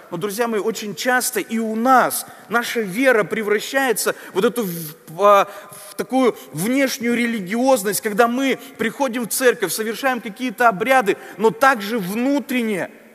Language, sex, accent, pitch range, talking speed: Russian, male, native, 205-250 Hz, 130 wpm